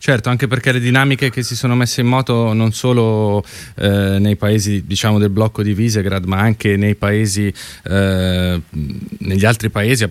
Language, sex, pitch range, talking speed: Italian, male, 105-130 Hz, 180 wpm